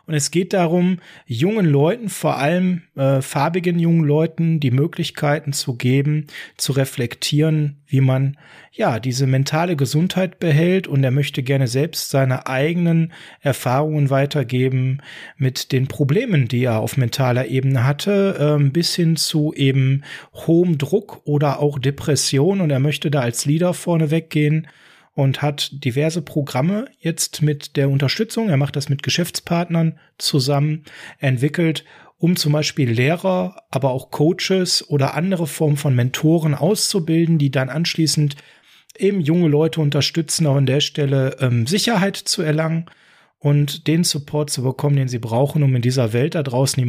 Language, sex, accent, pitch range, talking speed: German, male, German, 135-165 Hz, 150 wpm